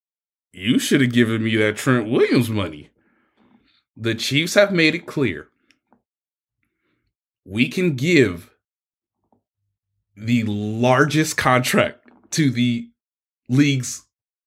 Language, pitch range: English, 110-150 Hz